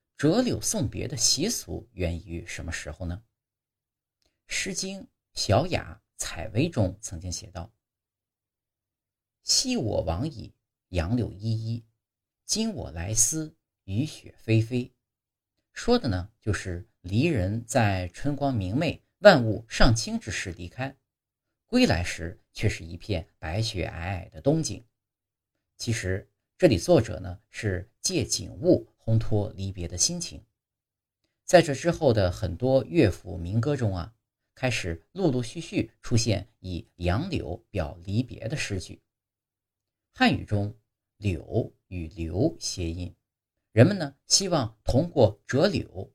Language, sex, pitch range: Chinese, male, 95-120 Hz